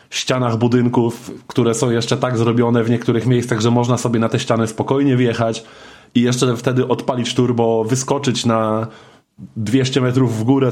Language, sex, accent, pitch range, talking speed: Polish, male, native, 115-135 Hz, 160 wpm